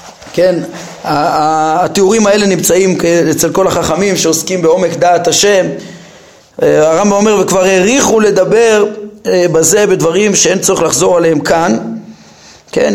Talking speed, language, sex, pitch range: 110 wpm, Hebrew, male, 160-210 Hz